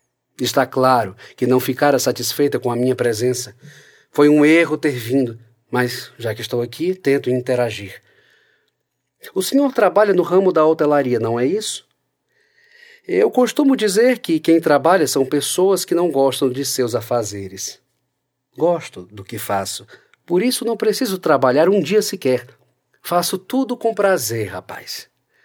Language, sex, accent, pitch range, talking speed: Portuguese, male, Brazilian, 120-180 Hz, 150 wpm